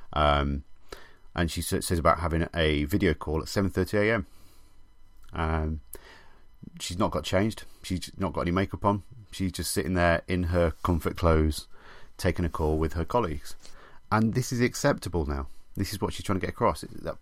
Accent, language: British, English